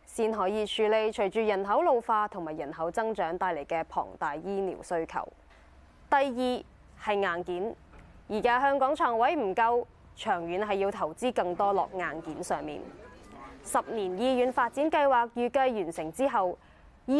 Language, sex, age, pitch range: Chinese, female, 20-39, 180-260 Hz